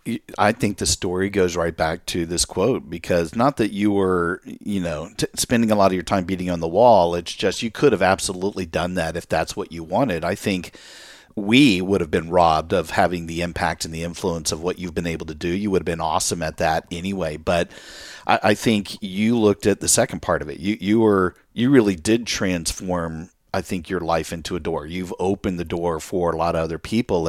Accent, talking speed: American, 230 wpm